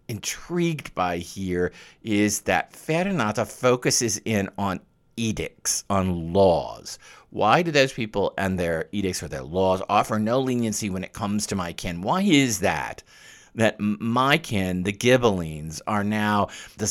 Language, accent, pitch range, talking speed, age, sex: English, American, 95-120 Hz, 150 wpm, 50-69, male